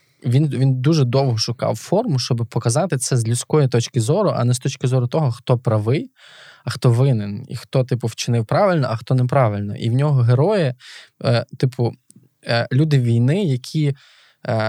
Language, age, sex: Ukrainian, 20-39, male